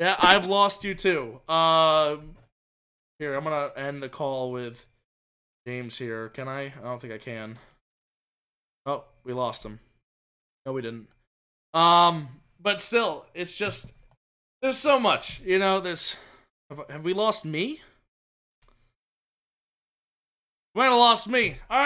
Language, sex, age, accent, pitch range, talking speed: English, male, 20-39, American, 135-190 Hz, 145 wpm